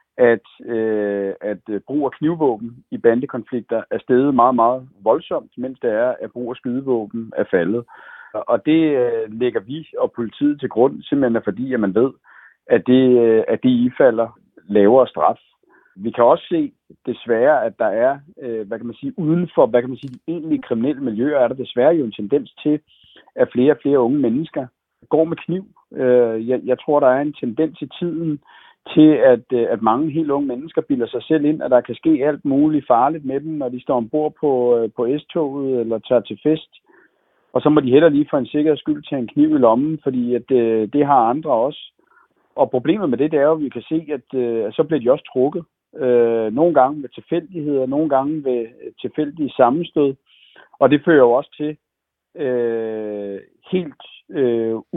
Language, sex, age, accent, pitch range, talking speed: Danish, male, 60-79, native, 120-160 Hz, 195 wpm